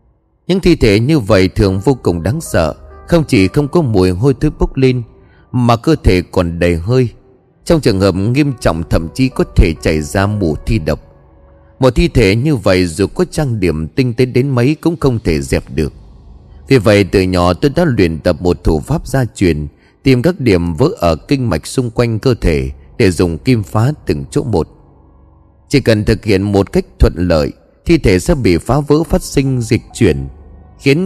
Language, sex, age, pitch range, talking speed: Vietnamese, male, 30-49, 85-140 Hz, 205 wpm